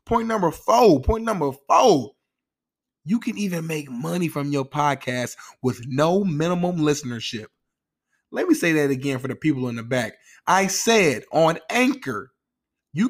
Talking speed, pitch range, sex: 155 wpm, 135-180 Hz, male